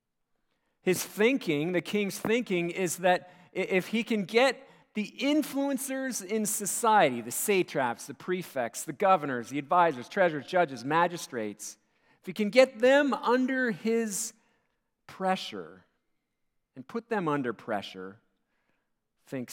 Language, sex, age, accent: English, male, 50-69, American